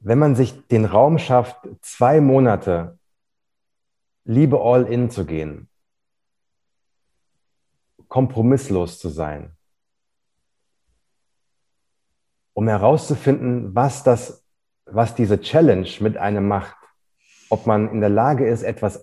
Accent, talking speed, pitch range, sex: German, 100 wpm, 95-125 Hz, male